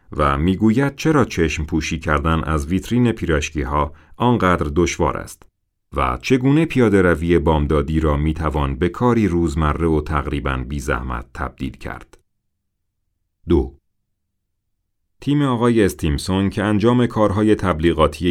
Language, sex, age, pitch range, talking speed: Persian, male, 40-59, 80-110 Hz, 125 wpm